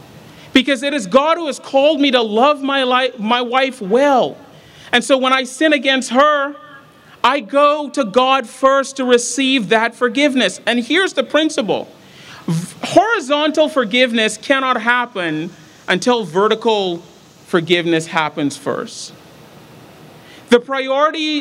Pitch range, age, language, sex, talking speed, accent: 225-280 Hz, 40-59, English, male, 130 wpm, American